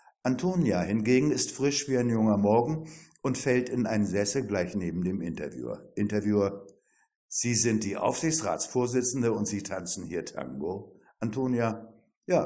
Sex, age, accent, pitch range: male, 60-79, German, 105-135 Hz